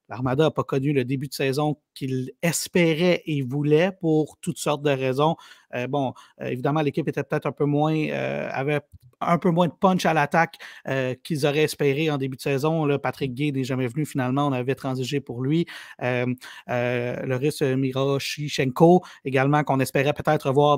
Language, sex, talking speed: French, male, 190 wpm